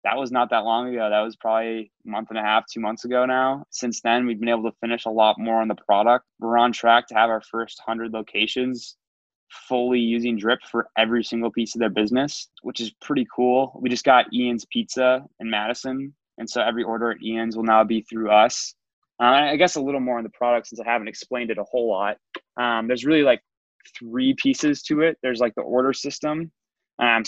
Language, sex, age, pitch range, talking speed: English, male, 20-39, 115-130 Hz, 225 wpm